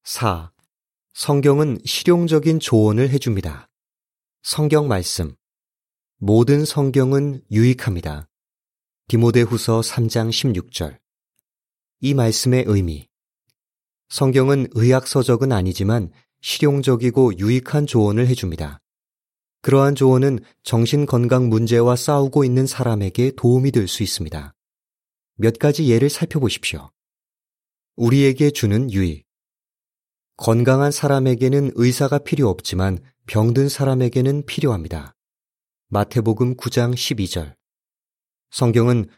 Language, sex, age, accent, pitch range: Korean, male, 30-49, native, 110-135 Hz